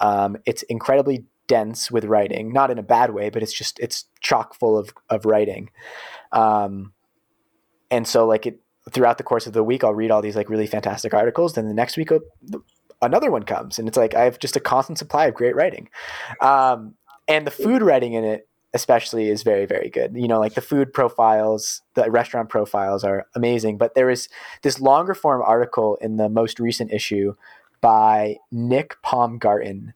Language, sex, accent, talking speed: English, male, American, 190 wpm